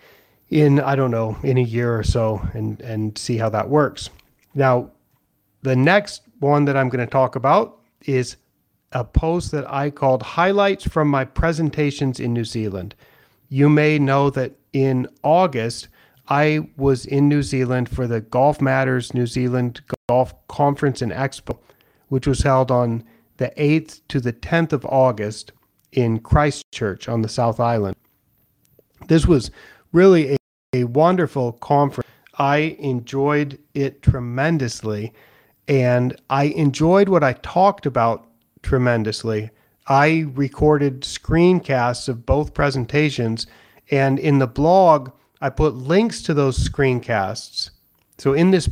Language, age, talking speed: English, 40-59, 140 wpm